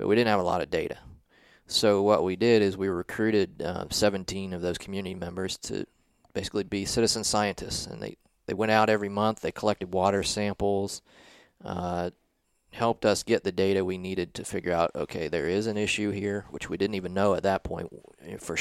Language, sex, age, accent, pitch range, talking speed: English, male, 30-49, American, 90-105 Hz, 205 wpm